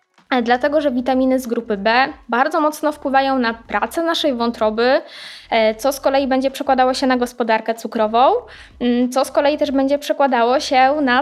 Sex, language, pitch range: female, Polish, 245-280 Hz